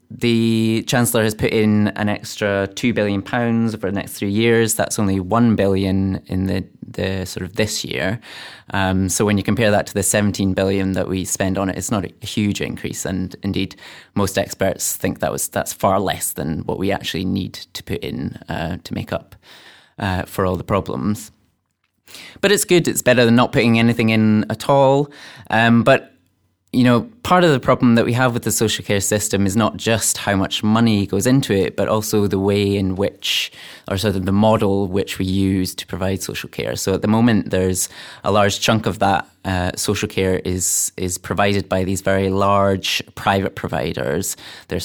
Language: English